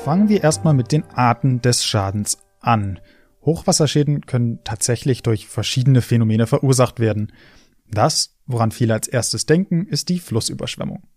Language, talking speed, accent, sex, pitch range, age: German, 140 wpm, German, male, 115-150 Hz, 20-39